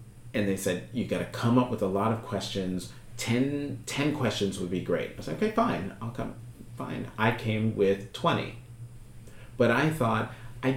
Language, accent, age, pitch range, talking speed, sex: English, American, 40-59, 105-125 Hz, 190 wpm, male